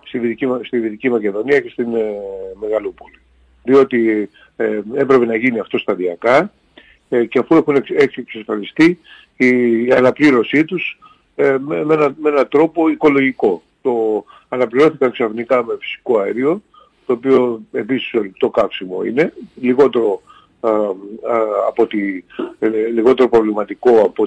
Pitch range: 110-165 Hz